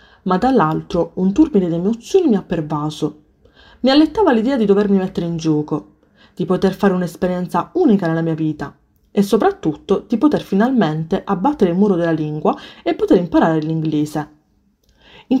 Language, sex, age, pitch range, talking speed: Italian, female, 20-39, 170-235 Hz, 155 wpm